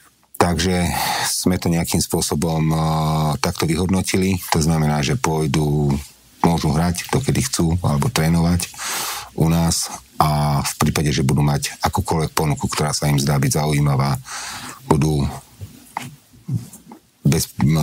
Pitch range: 70-85 Hz